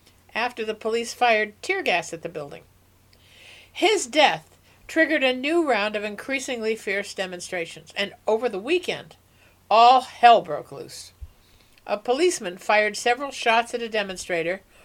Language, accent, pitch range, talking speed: English, American, 160-265 Hz, 140 wpm